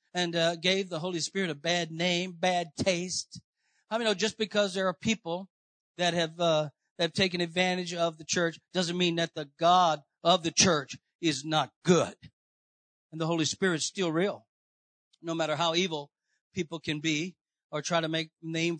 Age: 40-59